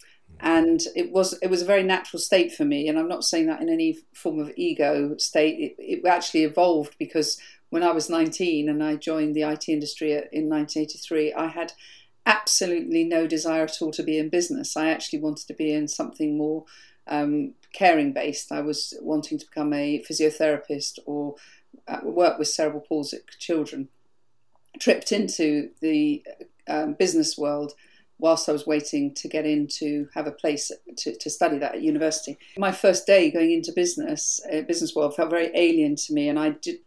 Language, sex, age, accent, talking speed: English, female, 40-59, British, 180 wpm